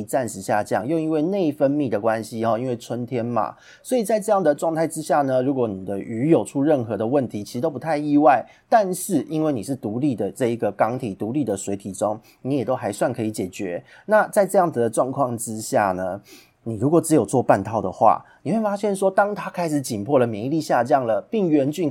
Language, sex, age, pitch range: Chinese, male, 30-49, 115-160 Hz